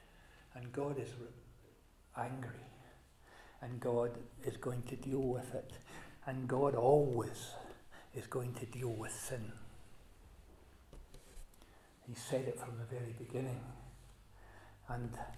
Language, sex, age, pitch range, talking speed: English, male, 60-79, 115-130 Hz, 115 wpm